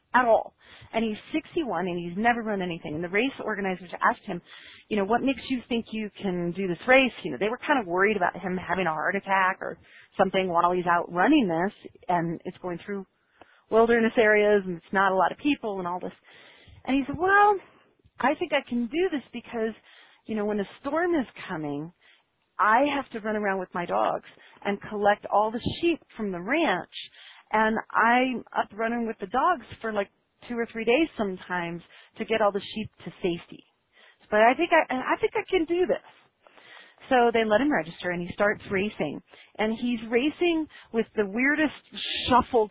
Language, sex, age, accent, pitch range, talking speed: English, female, 40-59, American, 185-245 Hz, 205 wpm